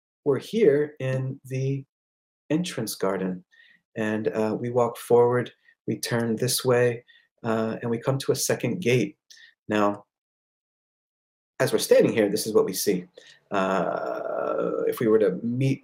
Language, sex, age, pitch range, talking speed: English, male, 40-59, 120-180 Hz, 150 wpm